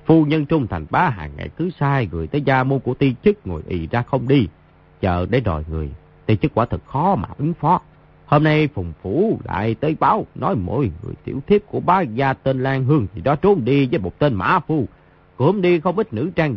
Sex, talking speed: male, 240 wpm